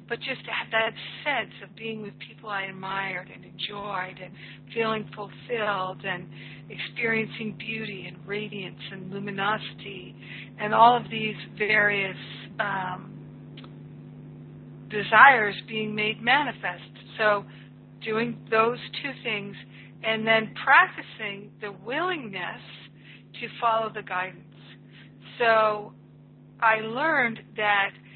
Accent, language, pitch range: American, English, 200-225 Hz